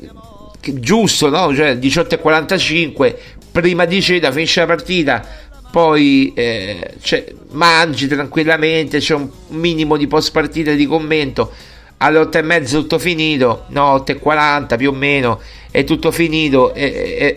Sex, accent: male, native